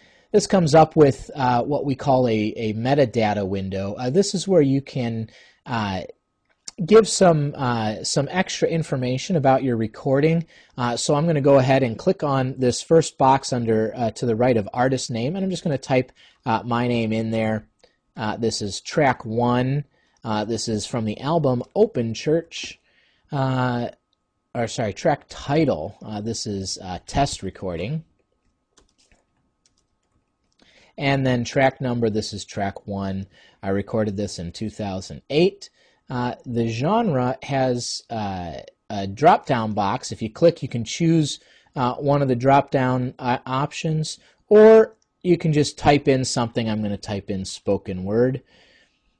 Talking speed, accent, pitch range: 165 wpm, American, 110-140 Hz